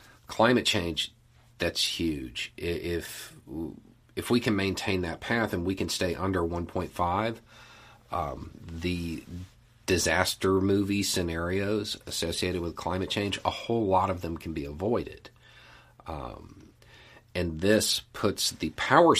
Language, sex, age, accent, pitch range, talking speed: English, male, 40-59, American, 85-110 Hz, 125 wpm